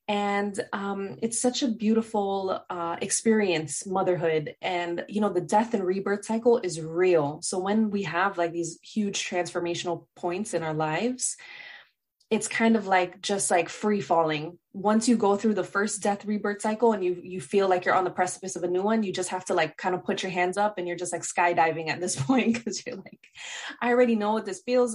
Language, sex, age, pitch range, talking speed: English, female, 20-39, 170-205 Hz, 215 wpm